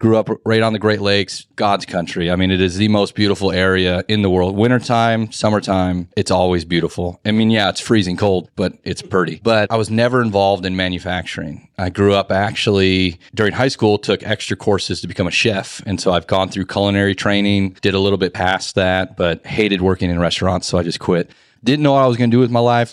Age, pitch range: 30-49, 95-110 Hz